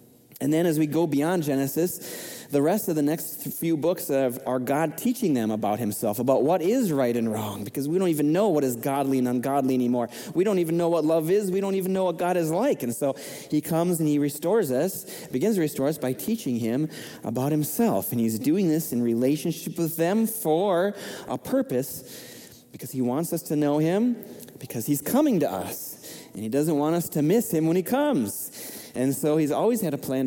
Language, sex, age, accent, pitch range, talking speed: English, male, 30-49, American, 140-180 Hz, 220 wpm